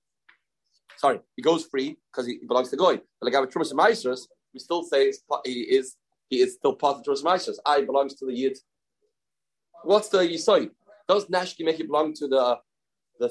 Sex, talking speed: male, 195 wpm